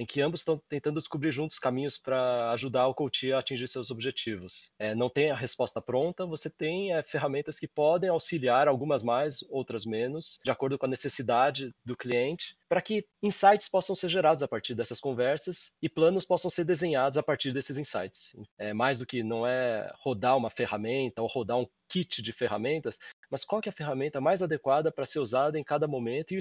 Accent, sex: Brazilian, male